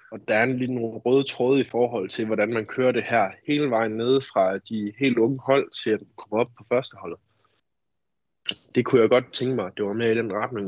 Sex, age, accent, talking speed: male, 20-39, native, 240 wpm